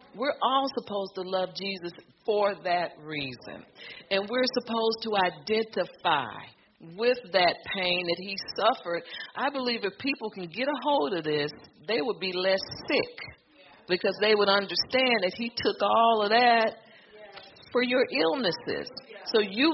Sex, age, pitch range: female, 50-69, 165-230 Hz